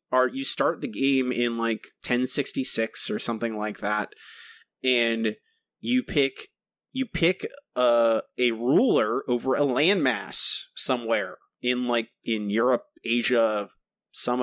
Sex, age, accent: male, 30-49, American